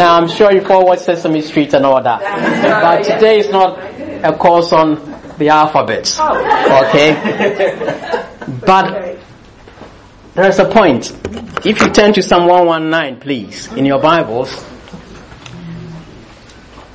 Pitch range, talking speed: 150-195 Hz, 125 wpm